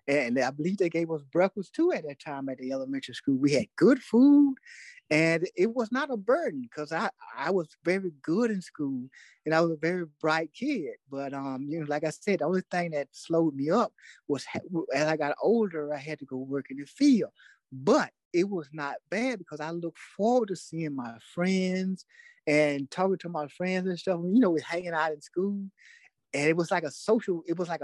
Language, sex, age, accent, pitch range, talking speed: English, male, 30-49, American, 150-200 Hz, 220 wpm